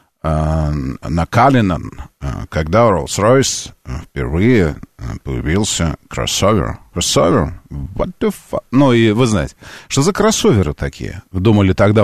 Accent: native